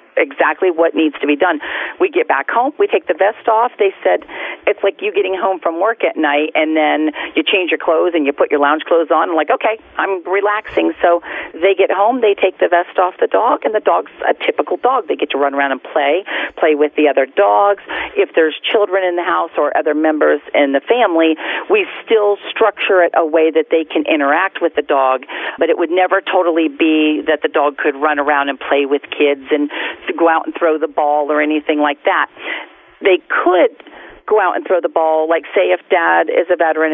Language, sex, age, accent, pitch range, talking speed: English, female, 40-59, American, 150-200 Hz, 225 wpm